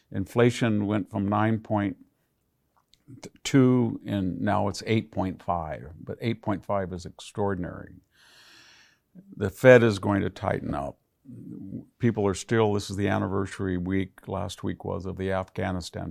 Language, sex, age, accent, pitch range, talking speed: English, male, 50-69, American, 95-105 Hz, 125 wpm